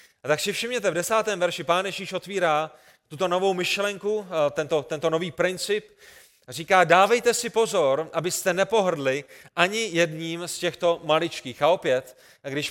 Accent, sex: native, male